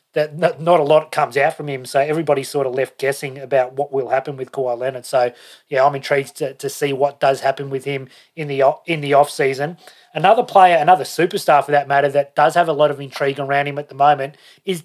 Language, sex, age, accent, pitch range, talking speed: English, male, 30-49, Australian, 140-160 Hz, 240 wpm